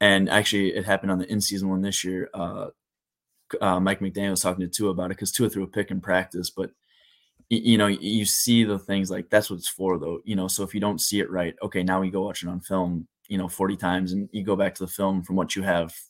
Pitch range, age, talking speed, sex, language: 90-100 Hz, 20-39, 270 wpm, male, English